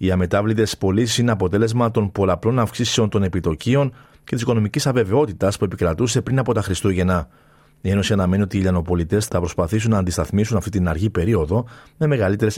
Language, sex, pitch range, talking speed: Greek, male, 95-115 Hz, 170 wpm